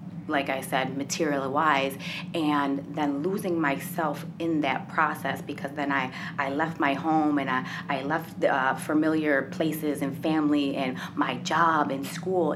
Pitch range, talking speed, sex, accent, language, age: 145-170 Hz, 155 wpm, female, American, English, 30-49